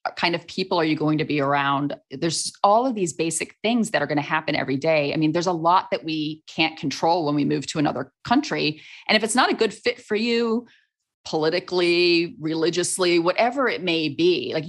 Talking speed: 215 wpm